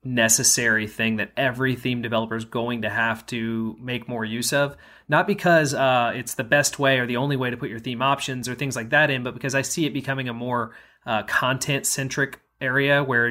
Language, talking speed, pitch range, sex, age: English, 220 wpm, 115-135 Hz, male, 30-49